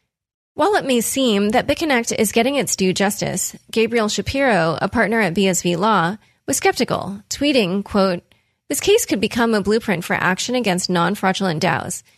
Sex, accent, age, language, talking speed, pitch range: female, American, 20-39, English, 165 wpm, 190-235 Hz